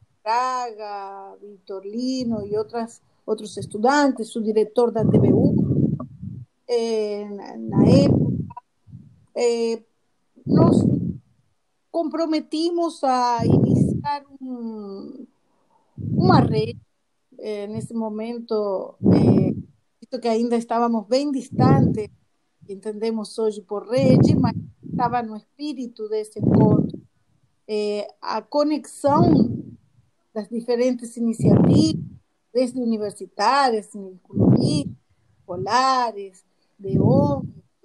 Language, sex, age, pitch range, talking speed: Portuguese, female, 40-59, 215-285 Hz, 85 wpm